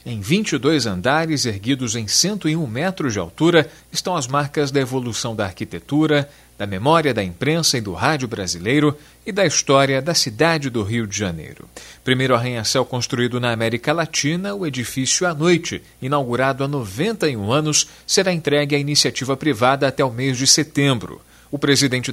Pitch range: 120-155 Hz